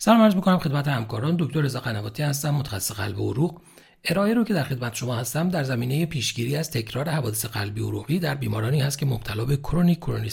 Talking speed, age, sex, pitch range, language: 205 wpm, 40-59, male, 125-180 Hz, Persian